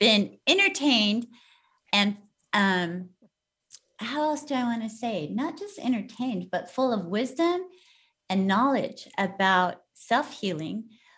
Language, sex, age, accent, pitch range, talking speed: English, female, 30-49, American, 195-275 Hz, 120 wpm